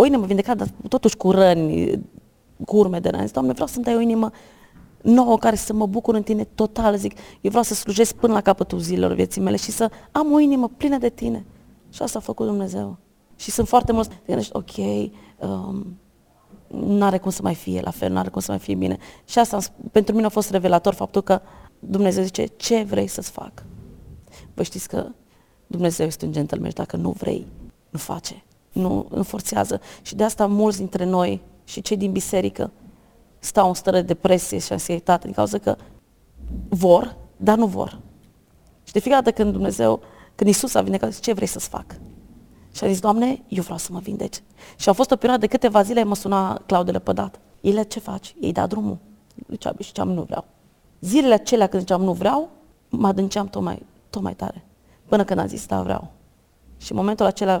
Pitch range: 180-220 Hz